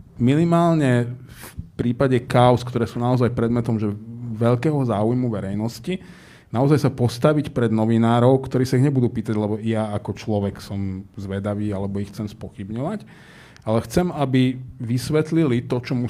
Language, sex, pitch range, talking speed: Slovak, male, 110-135 Hz, 145 wpm